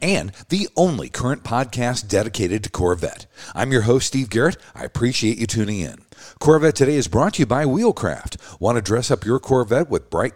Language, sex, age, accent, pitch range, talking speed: English, male, 50-69, American, 115-150 Hz, 195 wpm